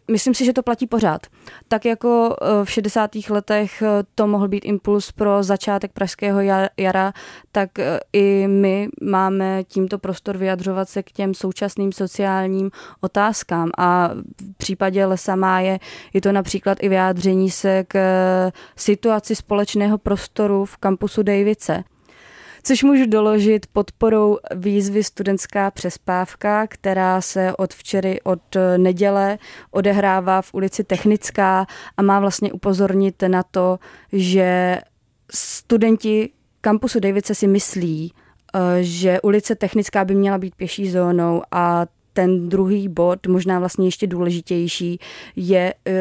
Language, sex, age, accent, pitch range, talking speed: Czech, female, 20-39, native, 185-205 Hz, 125 wpm